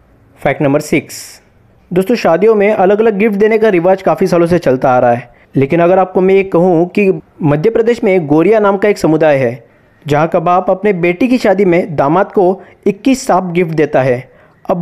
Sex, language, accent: male, Hindi, native